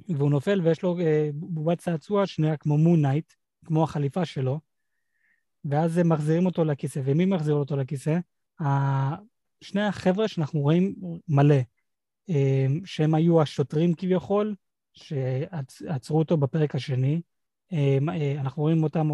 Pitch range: 145-180 Hz